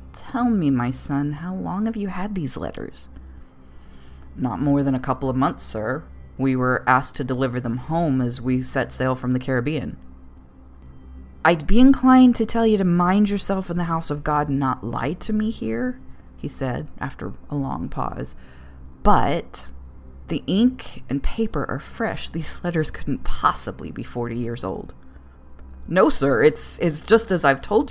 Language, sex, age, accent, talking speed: English, female, 30-49, American, 175 wpm